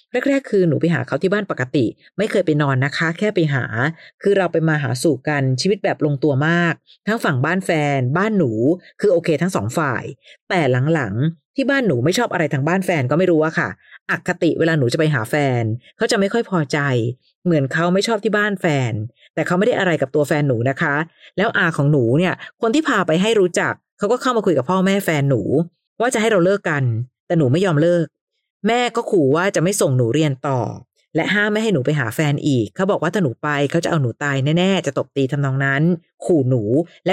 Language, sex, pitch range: Thai, female, 140-185 Hz